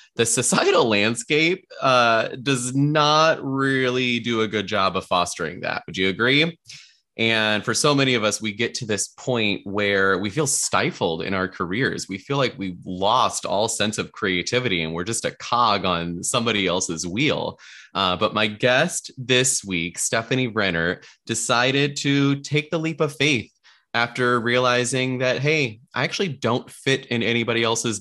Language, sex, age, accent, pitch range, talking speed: English, male, 20-39, American, 105-130 Hz, 170 wpm